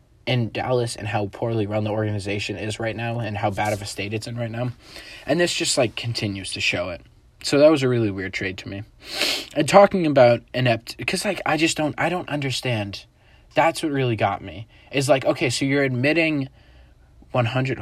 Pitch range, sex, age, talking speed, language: 105-135 Hz, male, 20-39, 210 wpm, English